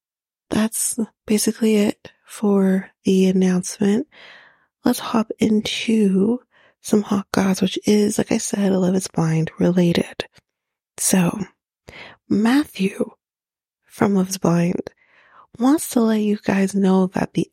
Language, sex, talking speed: English, female, 125 wpm